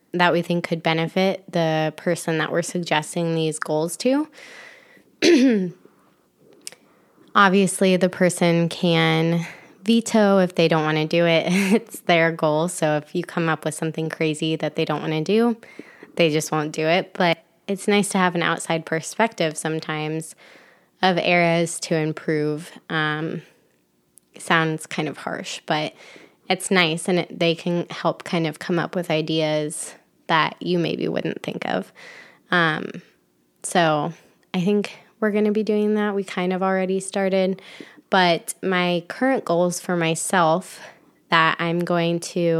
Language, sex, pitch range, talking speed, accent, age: English, female, 160-185 Hz, 155 wpm, American, 20-39